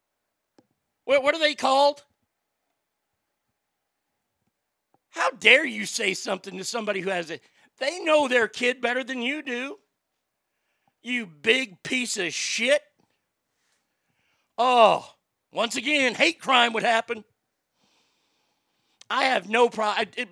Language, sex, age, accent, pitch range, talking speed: English, male, 50-69, American, 185-265 Hz, 110 wpm